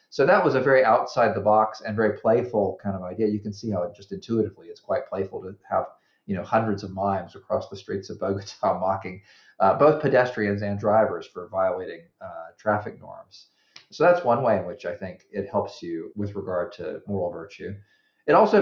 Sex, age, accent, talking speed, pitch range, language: male, 40-59, American, 210 wpm, 100-115 Hz, English